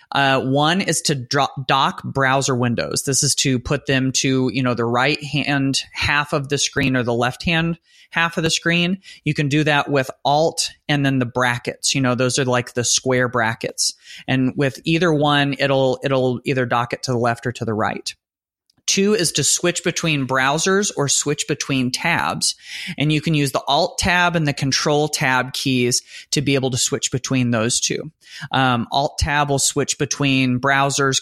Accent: American